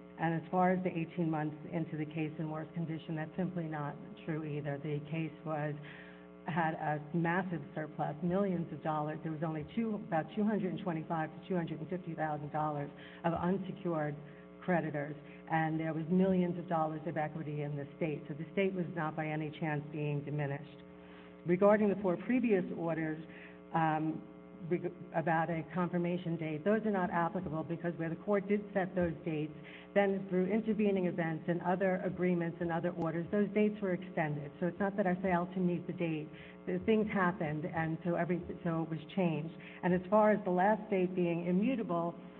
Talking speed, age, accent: 190 wpm, 50-69, American